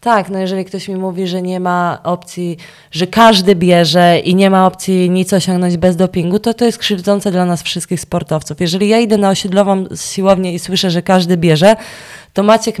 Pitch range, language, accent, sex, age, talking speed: 180-220 Hz, Polish, native, female, 20-39, 195 wpm